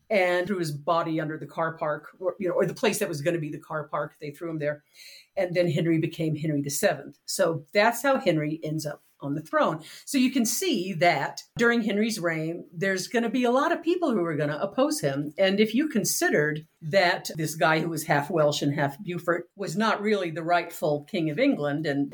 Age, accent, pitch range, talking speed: 50-69, American, 155-205 Hz, 235 wpm